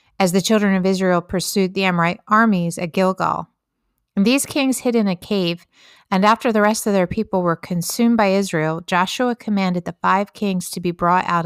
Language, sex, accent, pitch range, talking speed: English, female, American, 175-210 Hz, 200 wpm